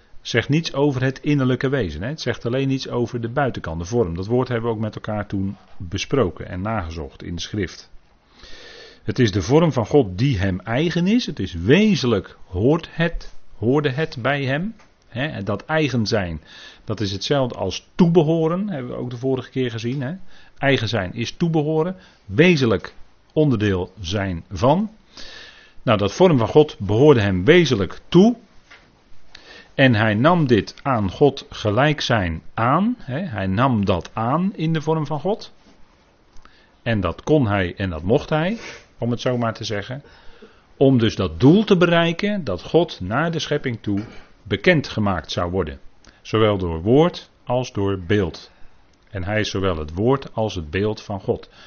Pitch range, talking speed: 100-150 Hz, 175 wpm